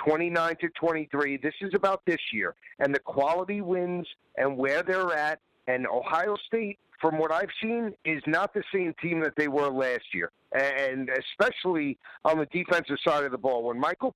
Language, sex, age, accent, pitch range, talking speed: English, male, 50-69, American, 145-185 Hz, 185 wpm